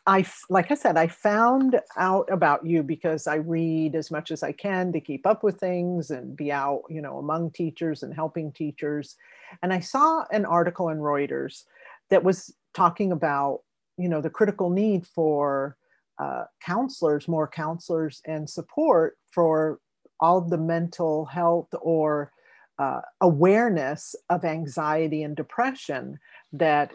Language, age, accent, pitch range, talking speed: English, 50-69, American, 155-190 Hz, 155 wpm